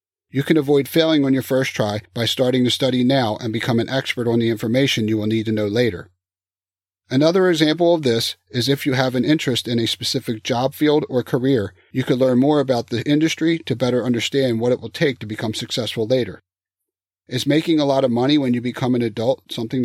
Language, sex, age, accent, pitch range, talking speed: English, male, 40-59, American, 110-135 Hz, 220 wpm